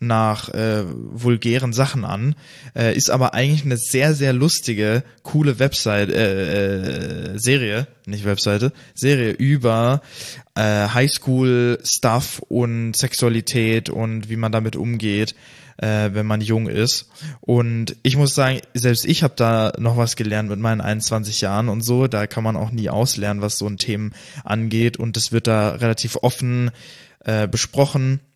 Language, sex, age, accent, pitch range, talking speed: German, male, 20-39, German, 110-130 Hz, 150 wpm